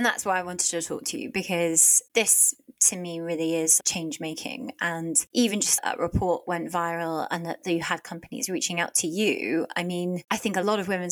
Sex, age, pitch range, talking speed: female, 20-39, 170-205 Hz, 220 wpm